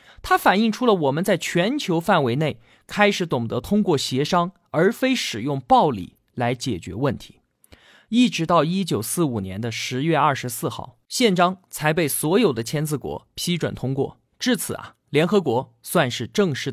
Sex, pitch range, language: male, 125-205 Hz, Chinese